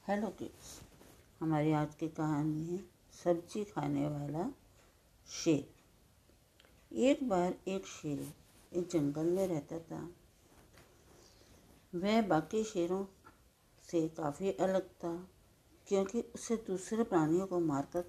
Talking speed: 110 wpm